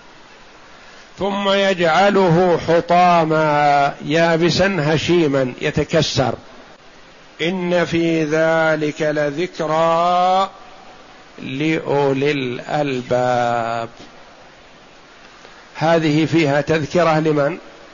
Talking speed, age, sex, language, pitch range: 55 wpm, 50-69, male, Arabic, 150-180 Hz